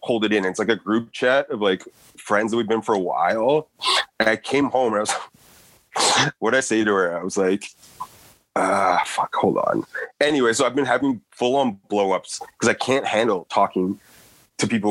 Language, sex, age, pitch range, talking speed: English, male, 30-49, 105-140 Hz, 205 wpm